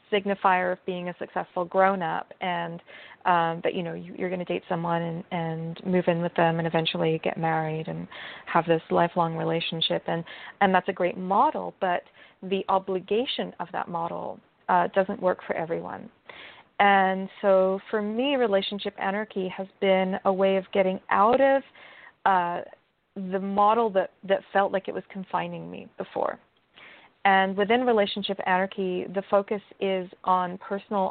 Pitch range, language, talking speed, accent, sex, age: 180-200 Hz, English, 160 wpm, American, female, 40-59